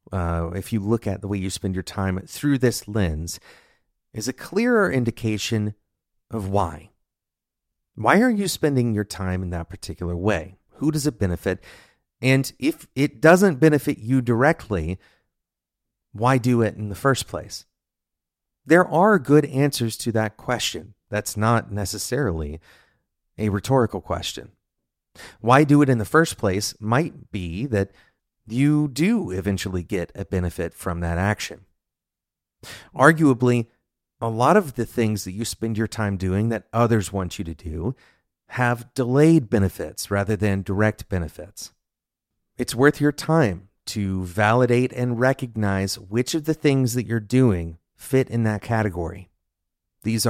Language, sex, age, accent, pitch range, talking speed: English, male, 30-49, American, 95-125 Hz, 150 wpm